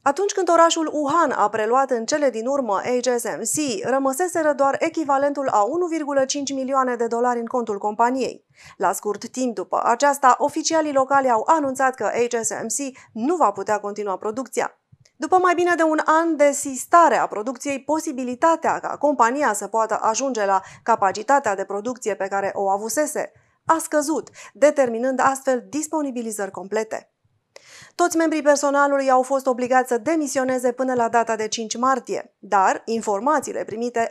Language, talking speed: Romanian, 150 wpm